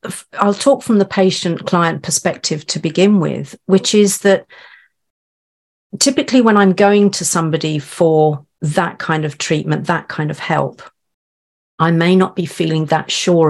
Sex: female